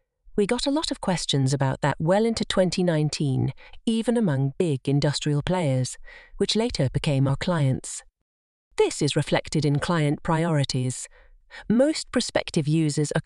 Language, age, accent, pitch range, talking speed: English, 40-59, British, 145-210 Hz, 140 wpm